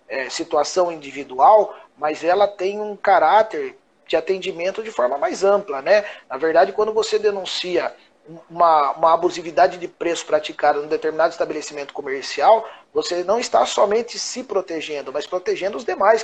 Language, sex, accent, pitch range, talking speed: Portuguese, male, Brazilian, 155-205 Hz, 150 wpm